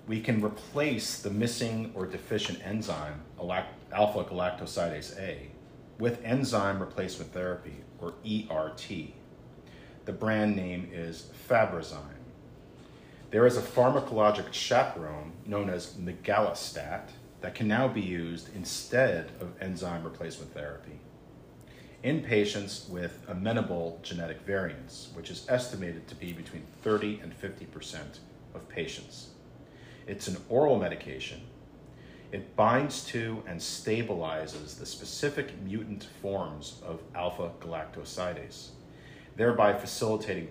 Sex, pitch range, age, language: male, 85-110 Hz, 40-59, English